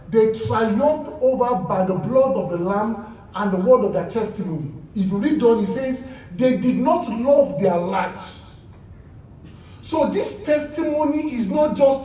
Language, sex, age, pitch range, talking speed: English, male, 50-69, 175-290 Hz, 170 wpm